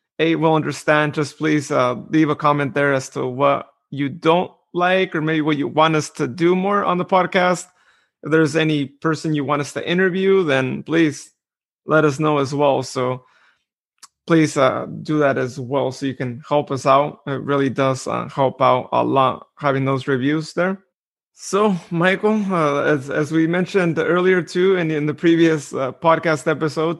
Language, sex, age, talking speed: English, male, 30-49, 190 wpm